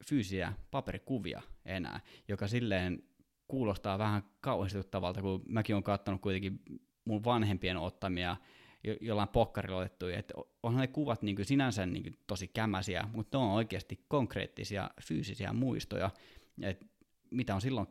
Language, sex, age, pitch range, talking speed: Finnish, male, 20-39, 95-110 Hz, 135 wpm